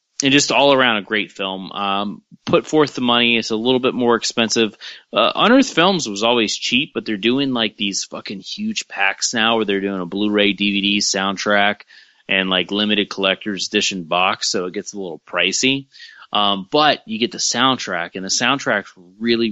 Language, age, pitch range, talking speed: English, 30-49, 95-115 Hz, 195 wpm